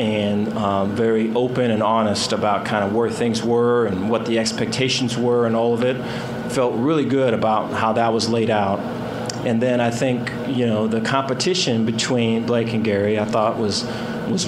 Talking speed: 190 wpm